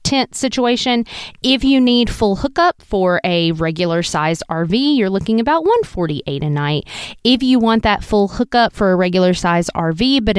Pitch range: 165-220 Hz